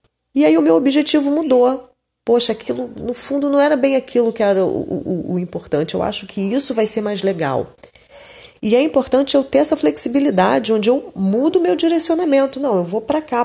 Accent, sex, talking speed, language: Brazilian, female, 205 wpm, Portuguese